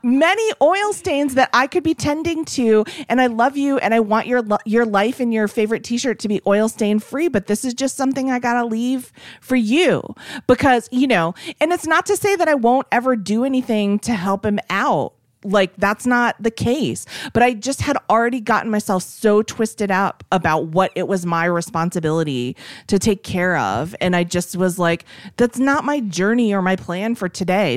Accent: American